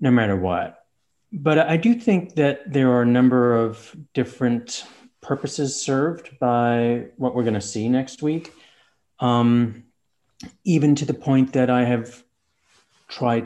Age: 30-49